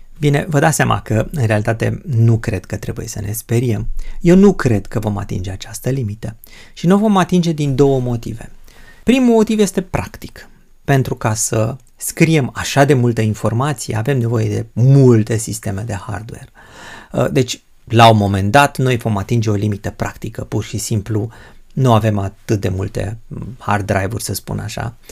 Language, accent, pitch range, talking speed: Romanian, native, 105-125 Hz, 175 wpm